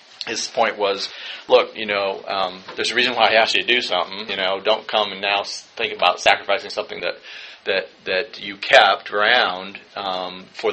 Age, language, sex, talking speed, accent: 40-59, English, male, 195 wpm, American